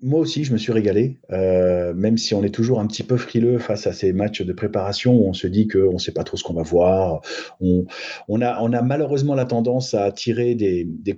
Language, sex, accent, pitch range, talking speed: French, male, French, 105-125 Hz, 250 wpm